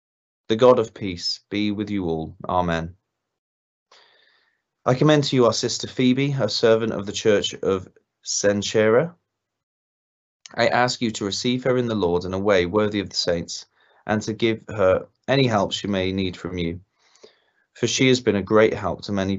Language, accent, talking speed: English, British, 185 wpm